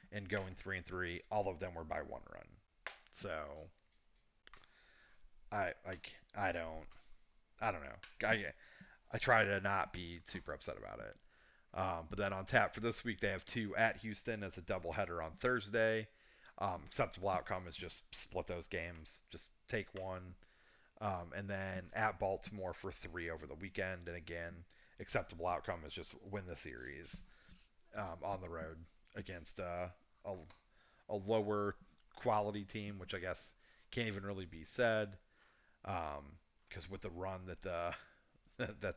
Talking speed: 160 wpm